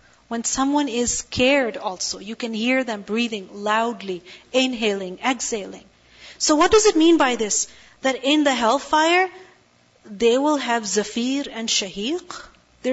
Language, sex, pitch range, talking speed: English, female, 225-315 Hz, 145 wpm